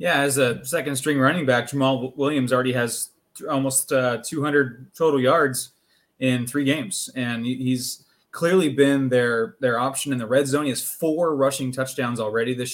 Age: 20-39